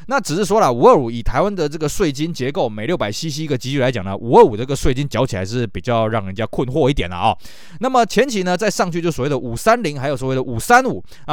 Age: 20-39